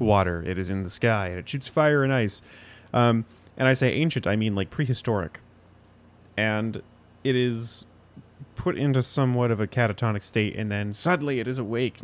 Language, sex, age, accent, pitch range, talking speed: English, male, 30-49, American, 105-125 Hz, 185 wpm